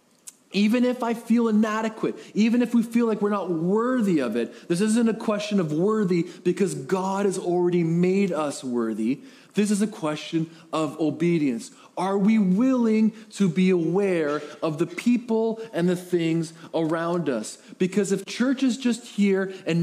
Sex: male